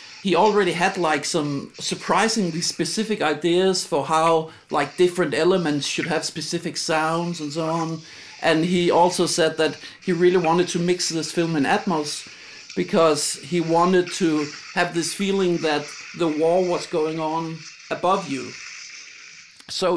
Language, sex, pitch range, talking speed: English, male, 160-185 Hz, 150 wpm